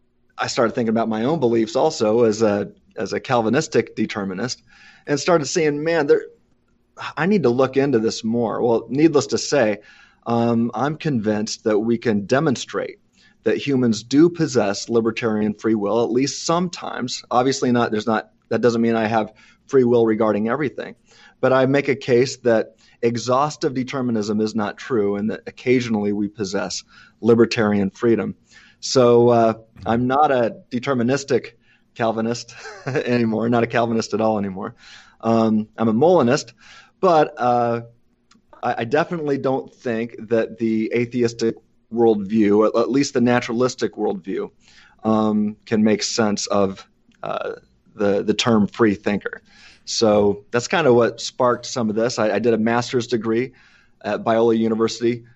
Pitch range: 110-125 Hz